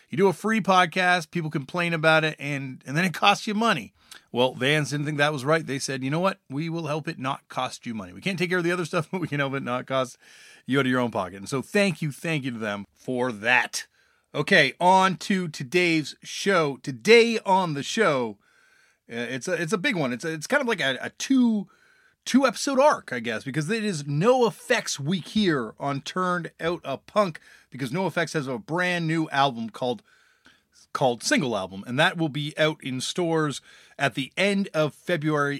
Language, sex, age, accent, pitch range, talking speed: English, male, 30-49, American, 135-185 Hz, 220 wpm